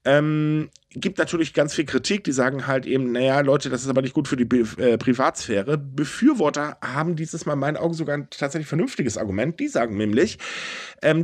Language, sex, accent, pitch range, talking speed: German, male, German, 125-165 Hz, 205 wpm